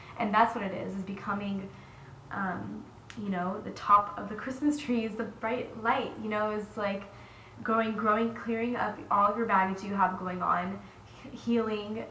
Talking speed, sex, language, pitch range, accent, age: 180 wpm, female, English, 185-225 Hz, American, 20-39